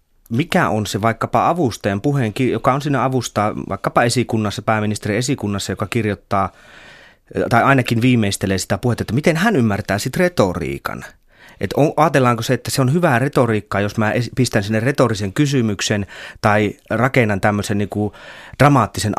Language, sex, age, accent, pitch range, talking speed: Finnish, male, 30-49, native, 100-125 Hz, 145 wpm